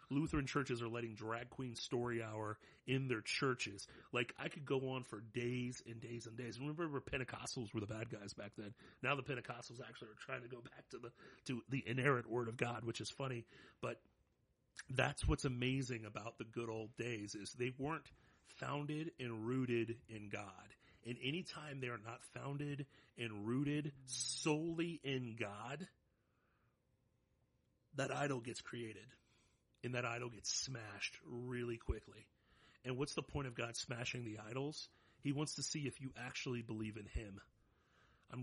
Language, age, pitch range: English, 40-59, 115-140 Hz